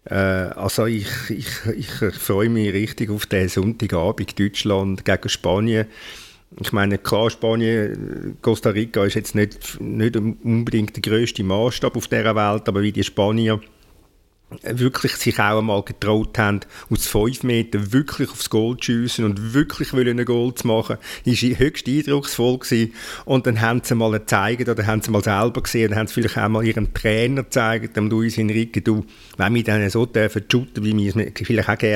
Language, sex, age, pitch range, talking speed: German, male, 50-69, 105-115 Hz, 180 wpm